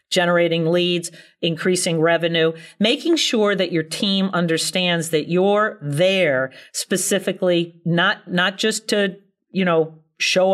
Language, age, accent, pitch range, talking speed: English, 50-69, American, 170-220 Hz, 120 wpm